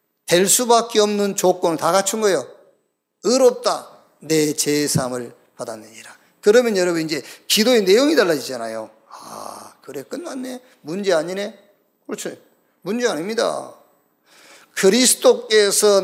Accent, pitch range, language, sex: native, 160-215 Hz, Korean, male